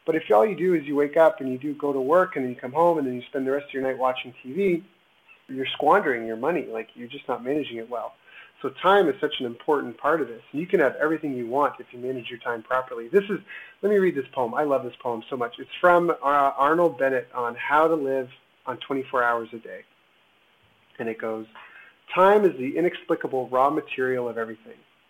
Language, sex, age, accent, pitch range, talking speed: English, male, 30-49, American, 130-170 Hz, 245 wpm